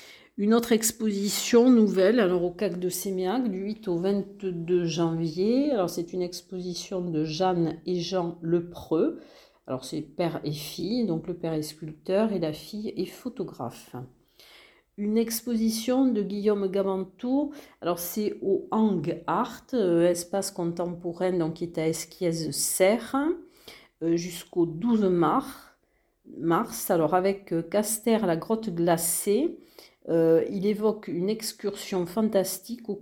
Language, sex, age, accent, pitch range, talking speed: French, female, 50-69, French, 170-215 Hz, 130 wpm